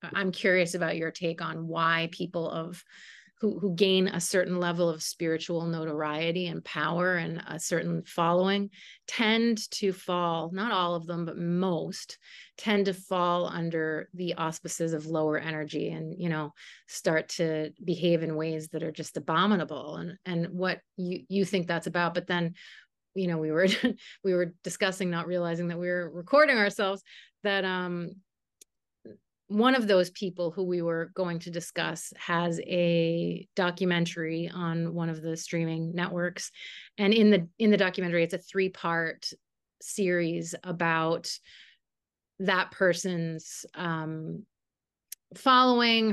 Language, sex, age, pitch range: English, female, 30-49, 165-190 Hz